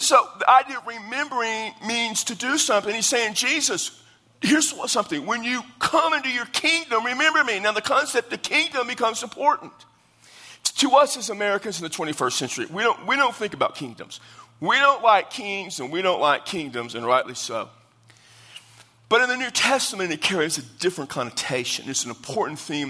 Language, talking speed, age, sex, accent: English, 185 wpm, 50-69, male, American